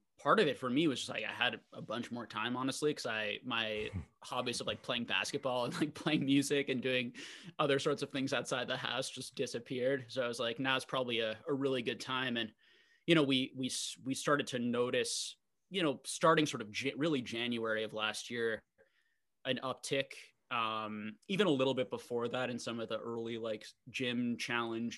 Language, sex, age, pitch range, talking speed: English, male, 20-39, 115-135 Hz, 210 wpm